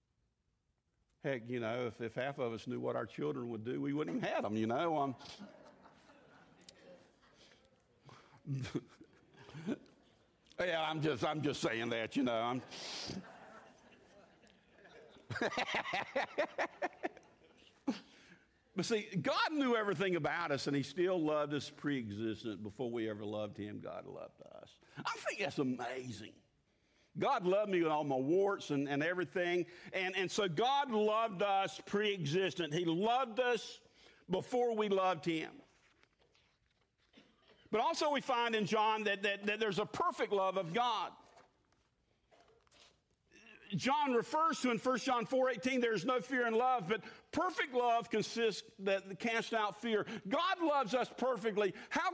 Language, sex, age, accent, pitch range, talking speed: English, male, 50-69, American, 150-235 Hz, 140 wpm